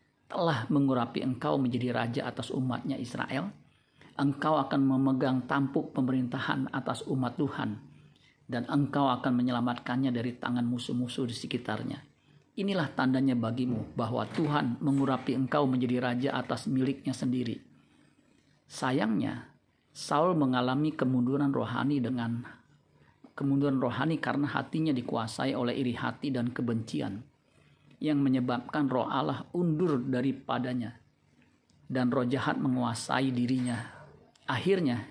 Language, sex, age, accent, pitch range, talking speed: Indonesian, male, 40-59, native, 125-140 Hz, 110 wpm